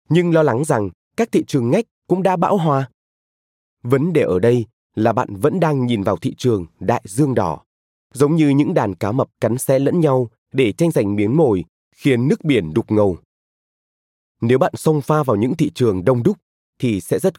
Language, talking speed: Vietnamese, 205 wpm